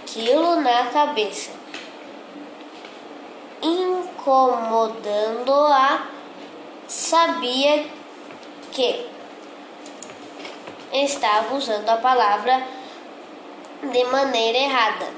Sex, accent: female, Brazilian